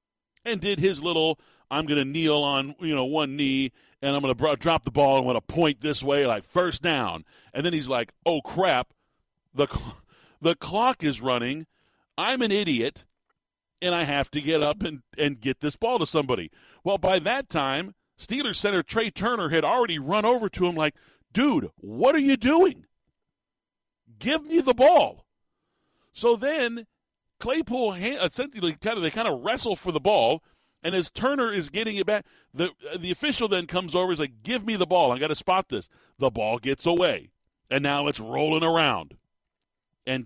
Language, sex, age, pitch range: English, male, 40-59, 140-200 Hz